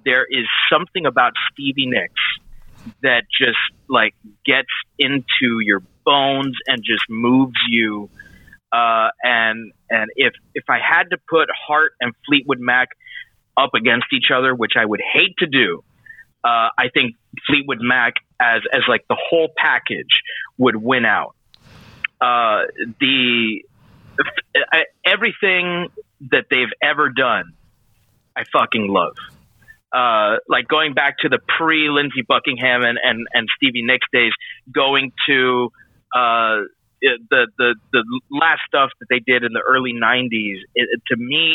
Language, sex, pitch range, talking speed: English, male, 115-140 Hz, 140 wpm